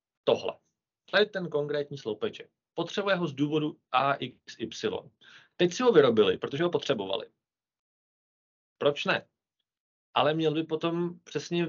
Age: 20-39